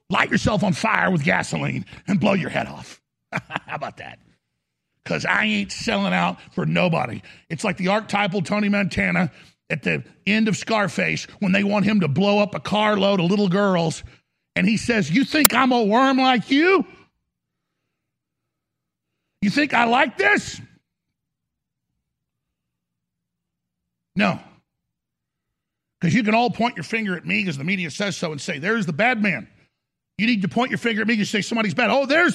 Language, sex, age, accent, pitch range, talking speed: English, male, 50-69, American, 175-225 Hz, 175 wpm